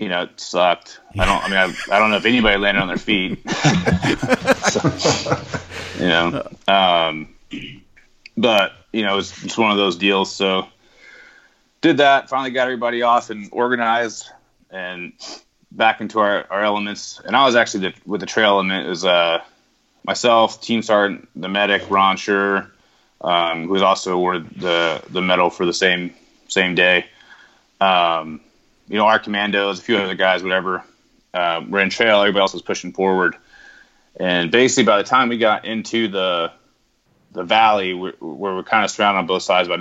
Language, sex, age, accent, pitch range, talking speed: English, male, 30-49, American, 90-110 Hz, 170 wpm